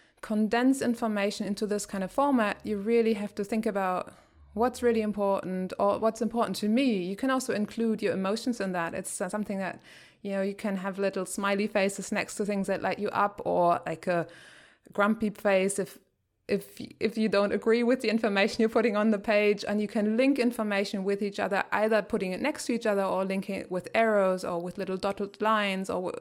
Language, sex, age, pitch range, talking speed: English, female, 20-39, 180-215 Hz, 210 wpm